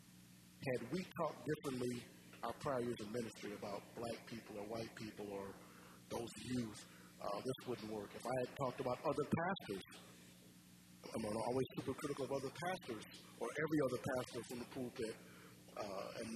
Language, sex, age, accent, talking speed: English, male, 40-59, American, 165 wpm